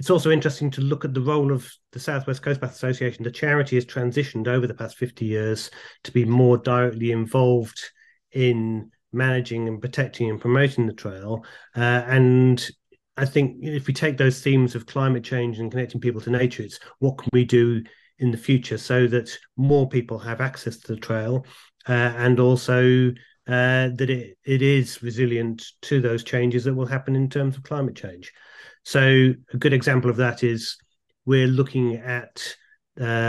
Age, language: 40-59, English